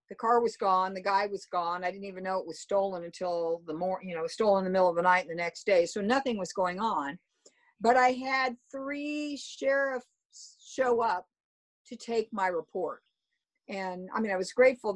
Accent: American